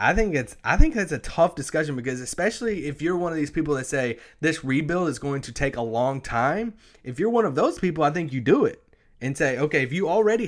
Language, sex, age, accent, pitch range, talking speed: English, male, 20-39, American, 125-165 Hz, 260 wpm